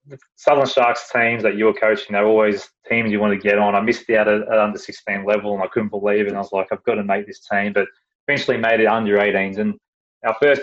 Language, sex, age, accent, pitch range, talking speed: English, male, 20-39, Australian, 100-115 Hz, 255 wpm